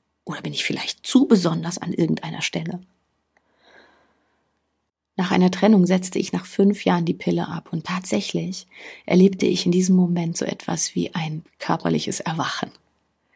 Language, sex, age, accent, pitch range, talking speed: German, female, 30-49, German, 165-200 Hz, 150 wpm